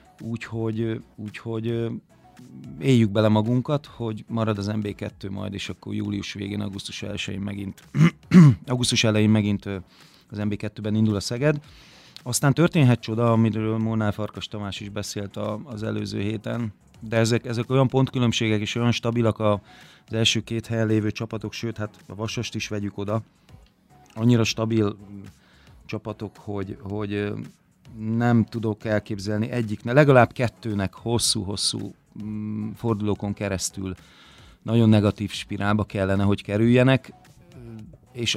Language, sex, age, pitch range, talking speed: Hungarian, male, 30-49, 105-115 Hz, 125 wpm